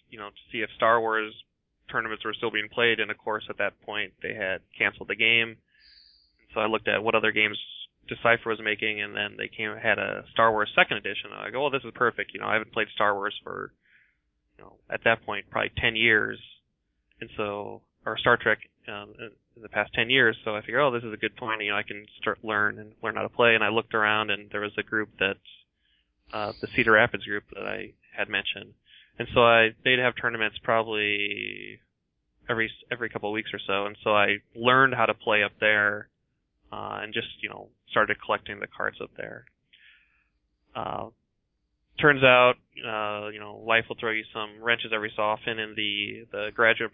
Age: 20-39